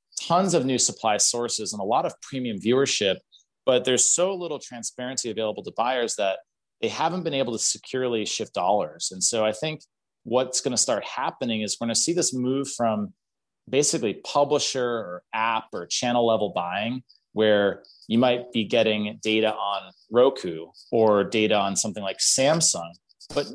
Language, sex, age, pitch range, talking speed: English, male, 30-49, 110-140 Hz, 175 wpm